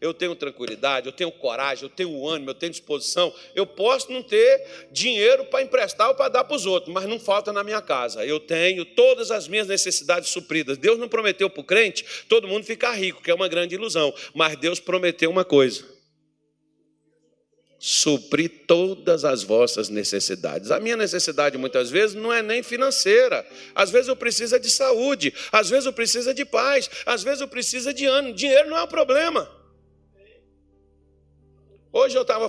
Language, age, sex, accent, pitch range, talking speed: Portuguese, 50-69, male, Brazilian, 150-240 Hz, 180 wpm